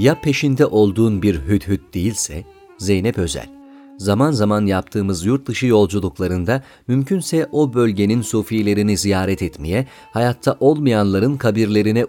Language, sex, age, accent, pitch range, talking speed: Turkish, male, 40-59, native, 100-130 Hz, 120 wpm